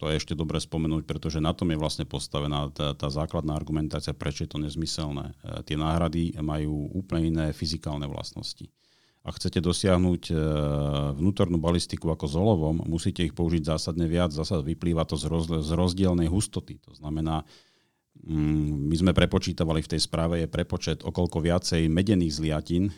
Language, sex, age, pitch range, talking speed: Slovak, male, 40-59, 80-95 Hz, 155 wpm